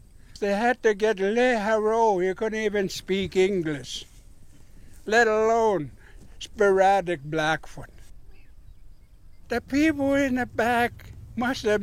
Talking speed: 110 wpm